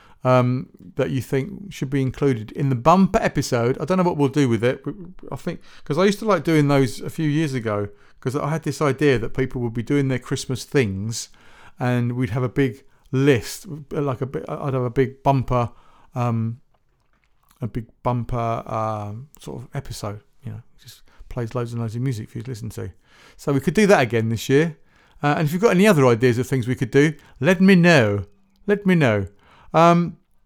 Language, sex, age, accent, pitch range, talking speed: English, male, 40-59, British, 120-150 Hz, 215 wpm